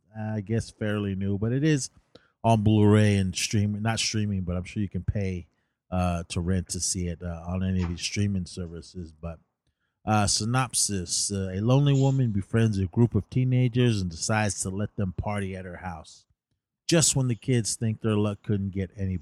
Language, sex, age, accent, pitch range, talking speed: English, male, 30-49, American, 95-120 Hz, 195 wpm